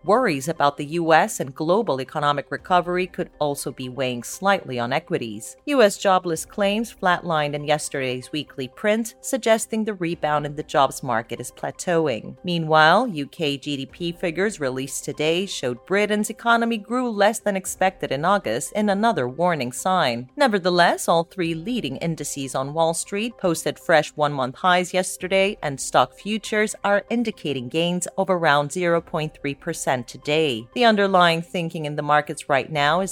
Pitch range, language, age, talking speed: 145-200 Hz, English, 40-59, 150 wpm